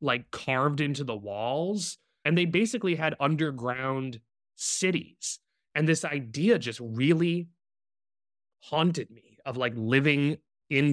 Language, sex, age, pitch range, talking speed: English, male, 20-39, 115-140 Hz, 120 wpm